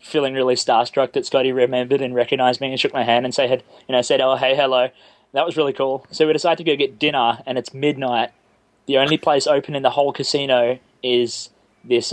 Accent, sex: Australian, male